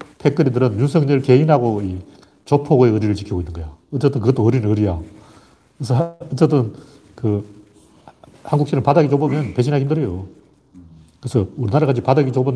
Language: Korean